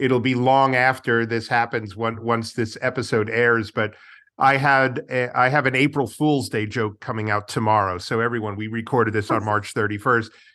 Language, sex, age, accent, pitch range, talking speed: English, male, 40-59, American, 115-135 Hz, 190 wpm